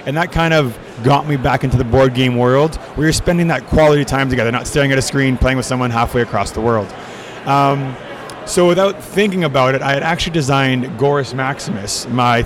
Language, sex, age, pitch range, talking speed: English, male, 30-49, 125-150 Hz, 210 wpm